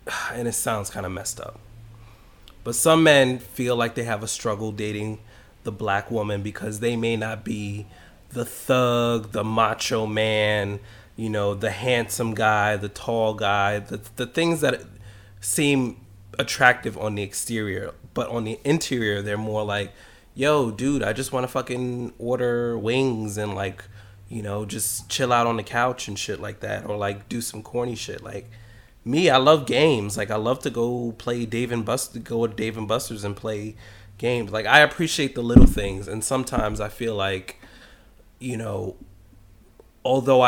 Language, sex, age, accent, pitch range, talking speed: English, male, 20-39, American, 105-120 Hz, 175 wpm